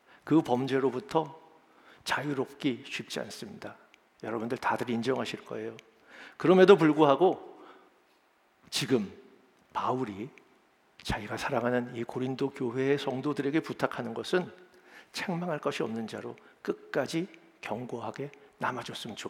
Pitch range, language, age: 125-175 Hz, Korean, 50-69